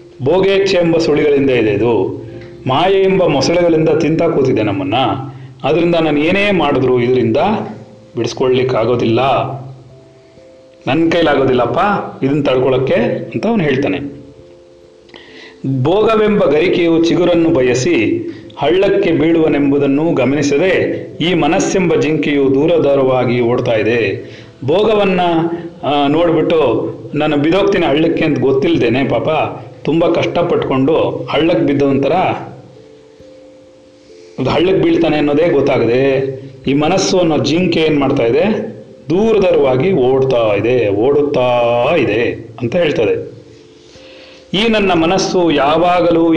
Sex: male